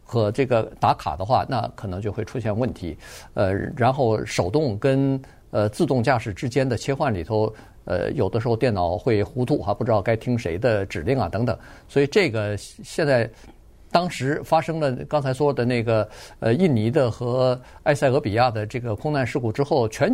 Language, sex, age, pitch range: Chinese, male, 50-69, 105-135 Hz